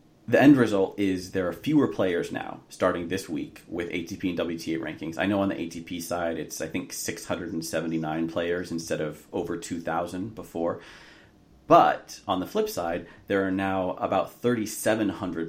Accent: American